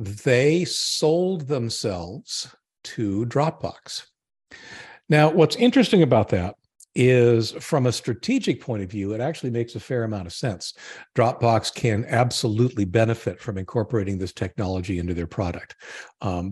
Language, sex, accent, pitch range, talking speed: English, male, American, 100-135 Hz, 135 wpm